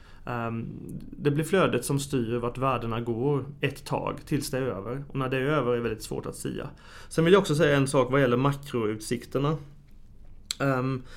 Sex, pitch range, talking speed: male, 120-150 Hz, 200 wpm